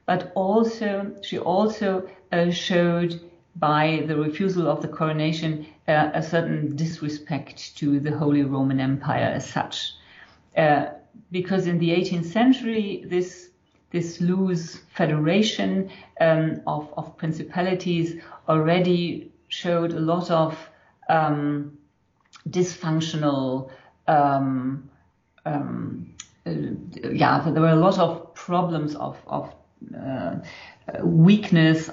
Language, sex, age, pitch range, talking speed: English, female, 50-69, 145-175 Hz, 110 wpm